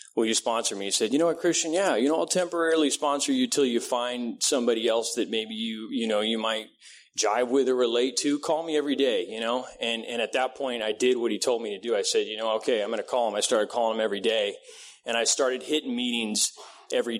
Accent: American